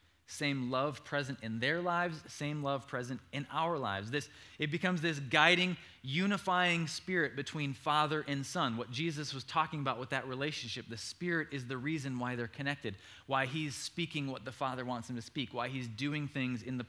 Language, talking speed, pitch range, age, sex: English, 195 wpm, 125-170 Hz, 20-39, male